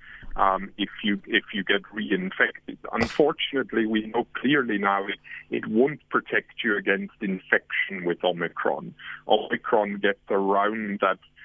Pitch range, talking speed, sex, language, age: 95-130 Hz, 130 wpm, male, English, 50-69